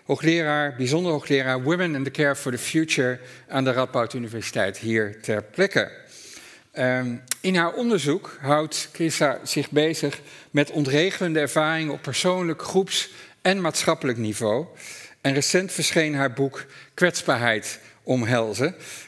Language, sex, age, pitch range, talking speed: Dutch, male, 50-69, 125-165 Hz, 130 wpm